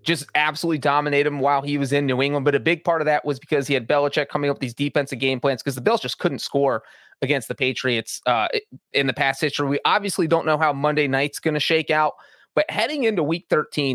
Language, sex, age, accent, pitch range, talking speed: English, male, 30-49, American, 145-175 Hz, 250 wpm